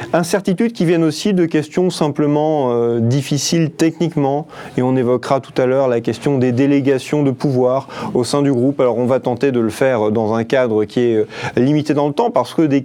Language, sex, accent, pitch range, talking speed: French, male, French, 125-155 Hz, 210 wpm